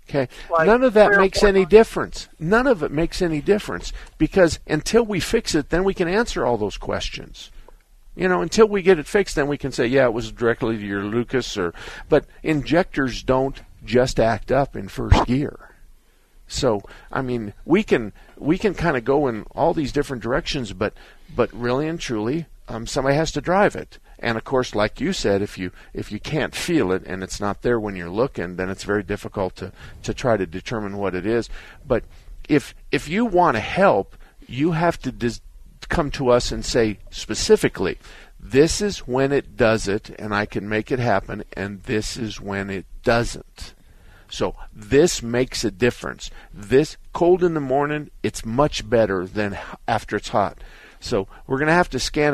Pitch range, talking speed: 105-145 Hz, 195 wpm